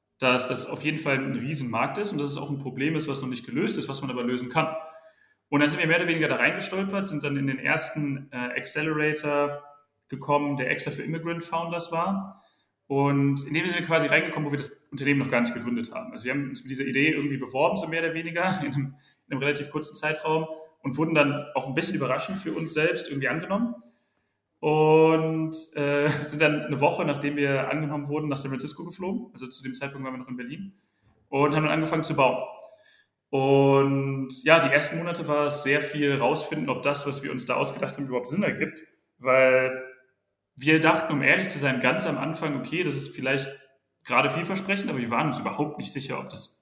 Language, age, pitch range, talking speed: German, 30-49, 135-160 Hz, 220 wpm